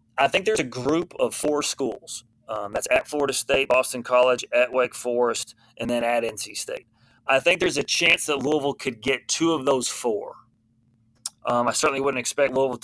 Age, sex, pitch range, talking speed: 30-49, male, 120-150 Hz, 195 wpm